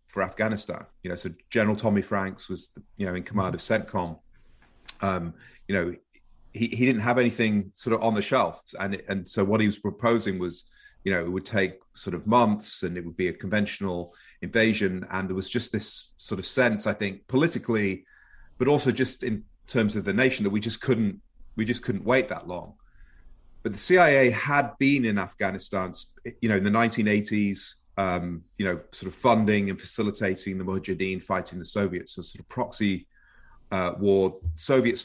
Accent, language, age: British, English, 30-49